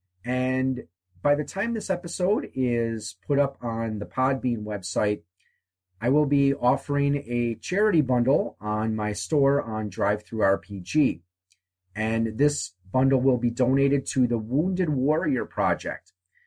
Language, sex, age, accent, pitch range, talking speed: English, male, 30-49, American, 95-130 Hz, 135 wpm